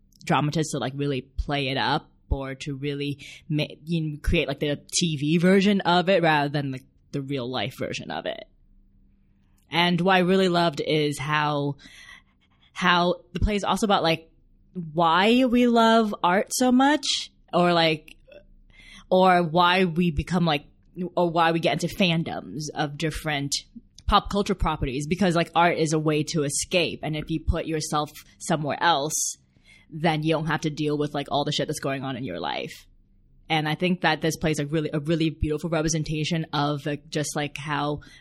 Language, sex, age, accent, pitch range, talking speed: English, female, 20-39, American, 150-190 Hz, 175 wpm